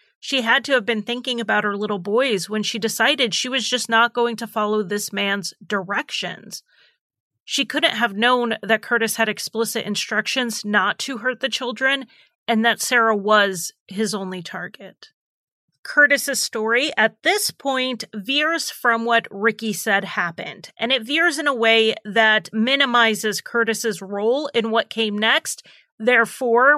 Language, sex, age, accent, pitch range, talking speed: English, female, 30-49, American, 210-255 Hz, 155 wpm